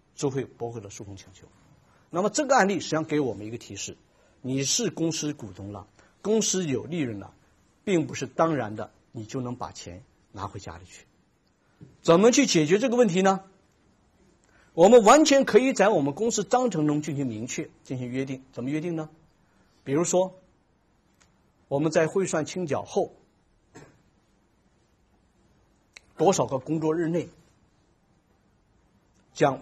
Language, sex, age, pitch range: Chinese, male, 50-69, 110-175 Hz